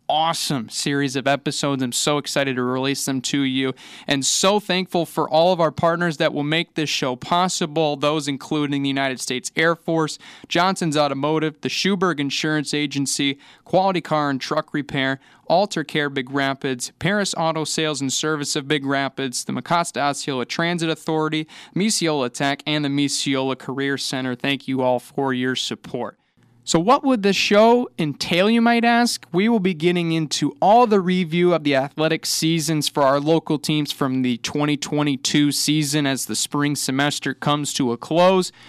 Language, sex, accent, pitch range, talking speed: English, male, American, 135-165 Hz, 170 wpm